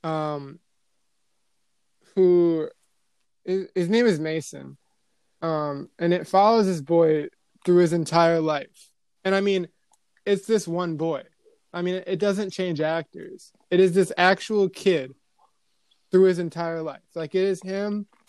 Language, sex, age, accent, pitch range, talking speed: English, male, 20-39, American, 155-185 Hz, 140 wpm